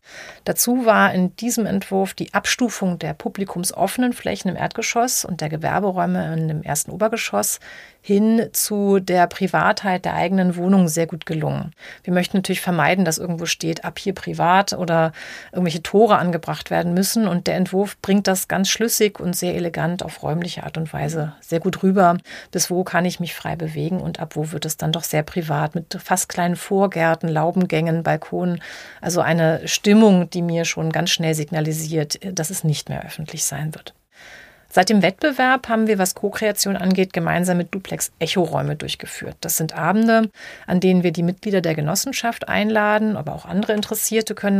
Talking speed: 175 wpm